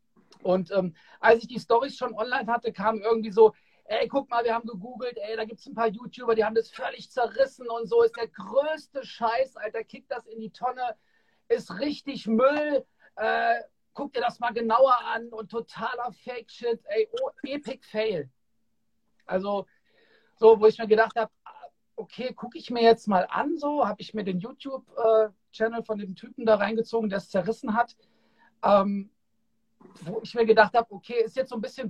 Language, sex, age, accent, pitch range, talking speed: German, male, 50-69, German, 210-240 Hz, 190 wpm